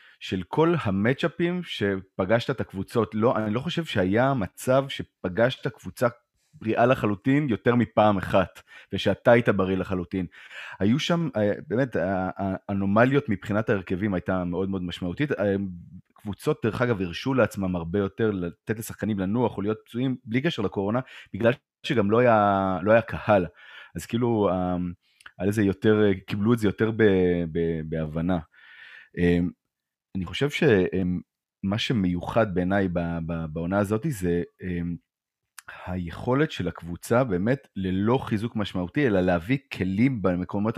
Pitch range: 90-120 Hz